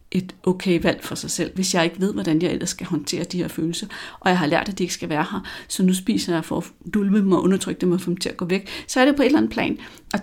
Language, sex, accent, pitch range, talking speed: Danish, female, native, 160-190 Hz, 325 wpm